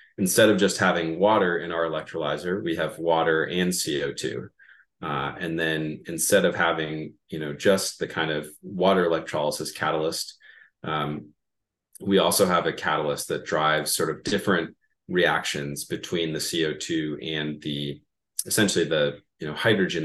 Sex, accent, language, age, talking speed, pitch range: male, American, English, 30-49, 150 wpm, 75-85 Hz